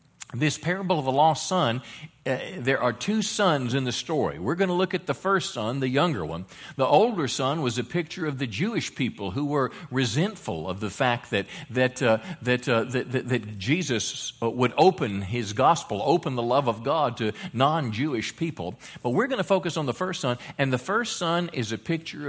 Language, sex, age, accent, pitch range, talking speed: English, male, 50-69, American, 115-165 Hz, 210 wpm